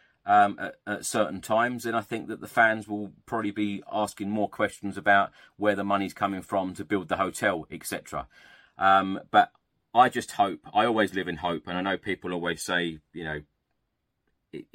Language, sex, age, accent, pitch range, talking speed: English, male, 30-49, British, 85-100 Hz, 190 wpm